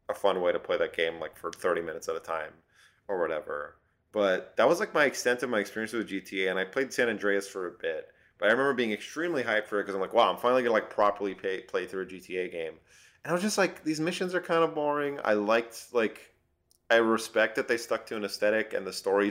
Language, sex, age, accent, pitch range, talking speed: English, male, 30-49, American, 95-135 Hz, 260 wpm